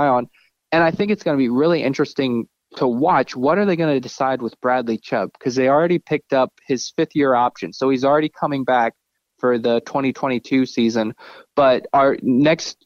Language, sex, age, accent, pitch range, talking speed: English, male, 20-39, American, 130-170 Hz, 190 wpm